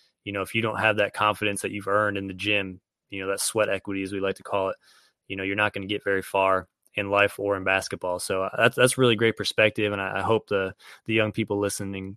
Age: 20-39